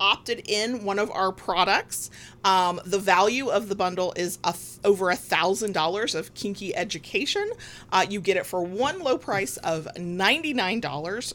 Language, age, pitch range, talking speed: English, 30-49, 175-220 Hz, 165 wpm